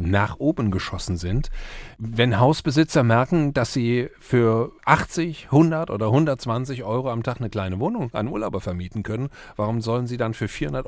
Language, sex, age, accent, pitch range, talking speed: German, male, 40-59, German, 110-150 Hz, 165 wpm